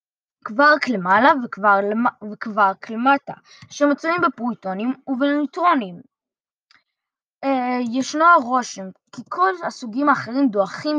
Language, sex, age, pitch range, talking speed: Hebrew, female, 20-39, 215-285 Hz, 100 wpm